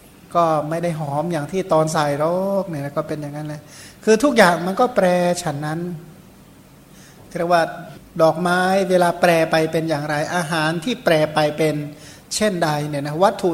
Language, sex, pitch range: Thai, male, 160-185 Hz